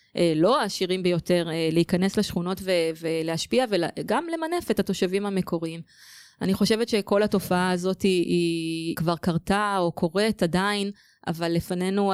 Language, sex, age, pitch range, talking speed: Hebrew, female, 20-39, 170-200 Hz, 125 wpm